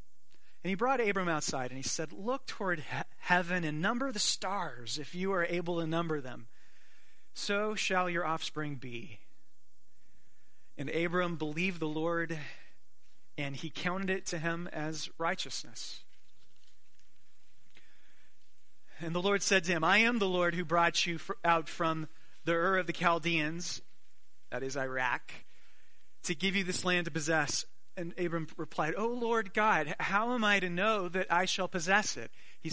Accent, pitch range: American, 150-185 Hz